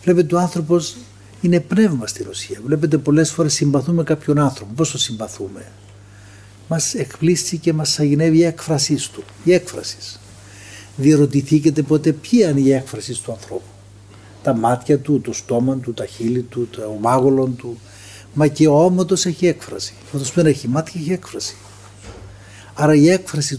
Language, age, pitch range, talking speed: Greek, 60-79, 105-155 Hz, 160 wpm